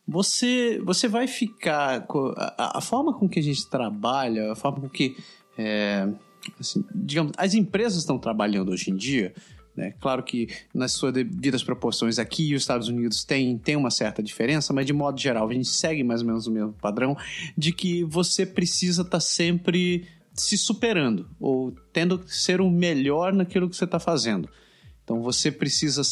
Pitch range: 135-205 Hz